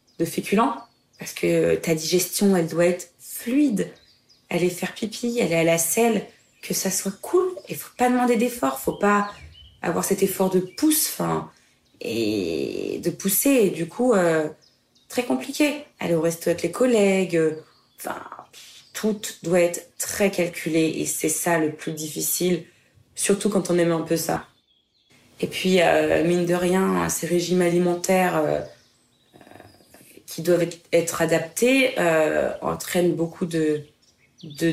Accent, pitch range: French, 160-185 Hz